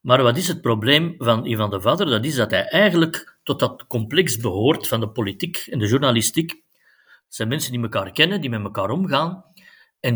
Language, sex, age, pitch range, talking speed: Dutch, male, 50-69, 115-165 Hz, 205 wpm